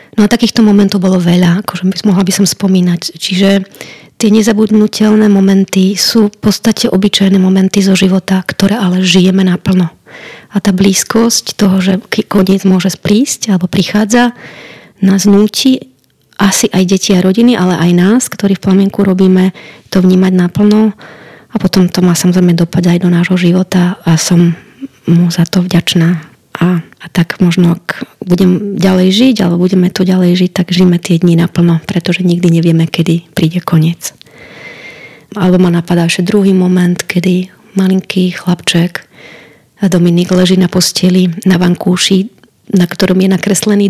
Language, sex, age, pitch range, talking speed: Slovak, female, 20-39, 180-200 Hz, 155 wpm